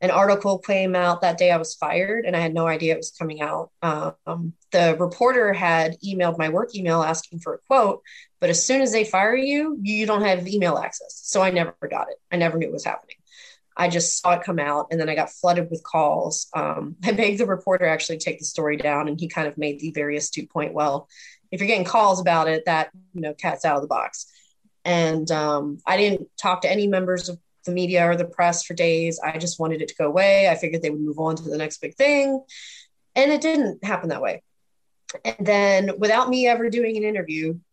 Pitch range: 165-195 Hz